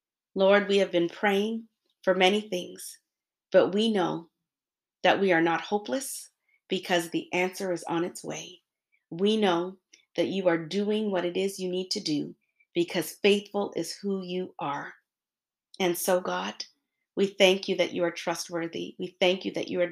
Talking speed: 175 wpm